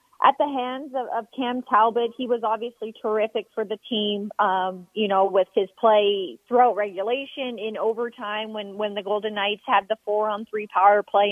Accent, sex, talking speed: American, female, 180 wpm